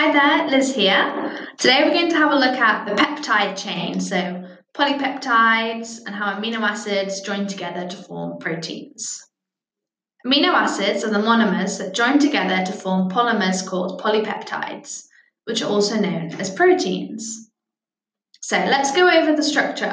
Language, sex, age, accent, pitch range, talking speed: English, female, 10-29, British, 195-275 Hz, 155 wpm